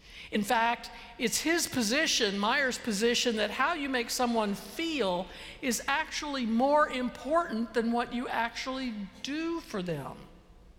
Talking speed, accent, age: 135 wpm, American, 60-79